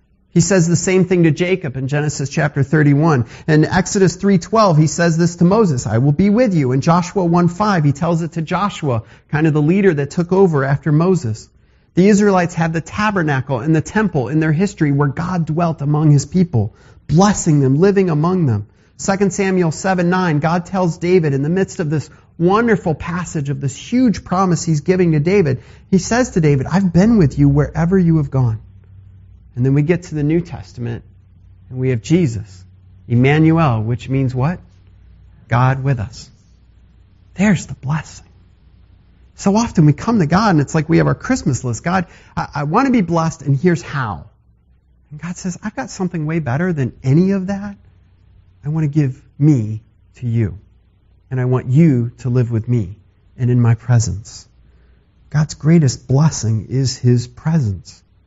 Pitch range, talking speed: 115-175 Hz, 185 wpm